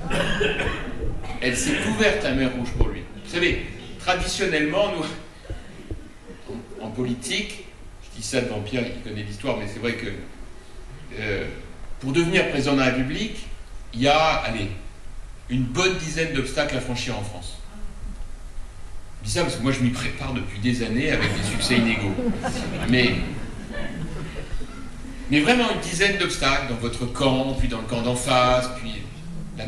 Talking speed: 160 wpm